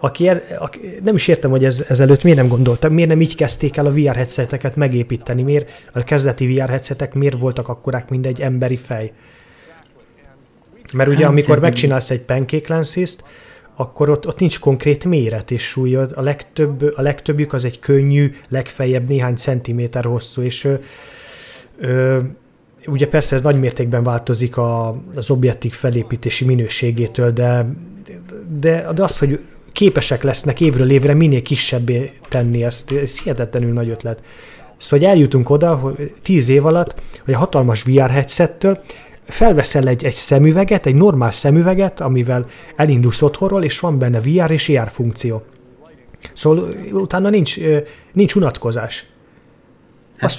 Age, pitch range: 30-49, 125-155 Hz